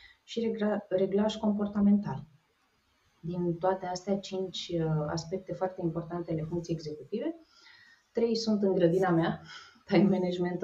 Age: 20-39